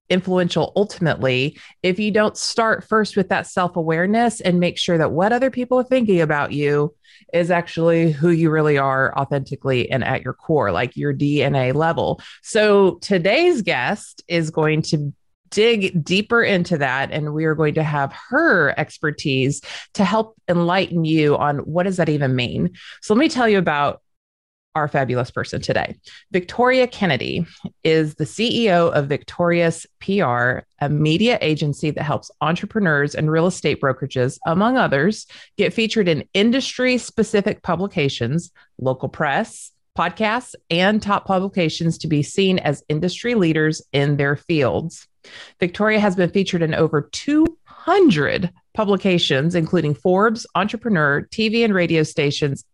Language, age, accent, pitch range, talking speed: English, 30-49, American, 150-200 Hz, 145 wpm